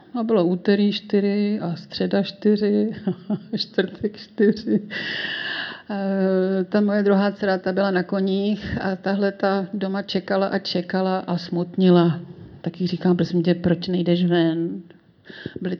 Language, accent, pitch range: Czech, native, 180-210 Hz